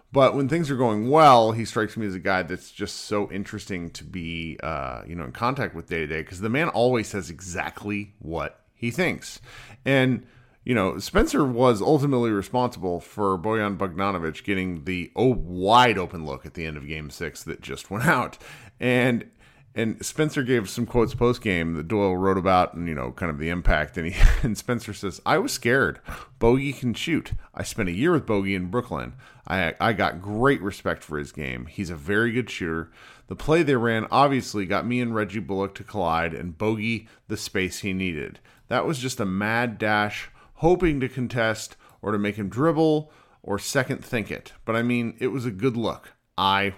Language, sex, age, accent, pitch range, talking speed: English, male, 40-59, American, 95-125 Hz, 195 wpm